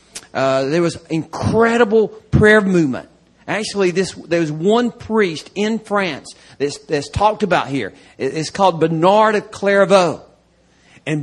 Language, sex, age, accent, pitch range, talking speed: English, male, 40-59, American, 175-235 Hz, 135 wpm